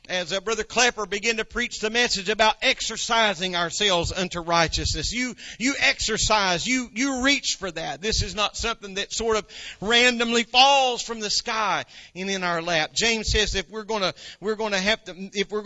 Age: 40-59